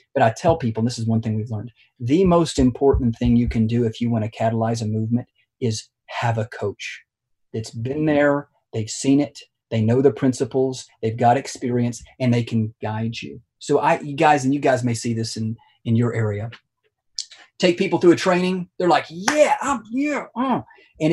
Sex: male